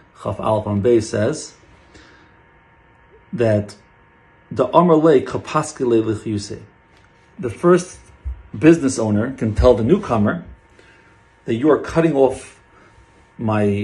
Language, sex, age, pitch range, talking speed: English, male, 40-59, 100-120 Hz, 95 wpm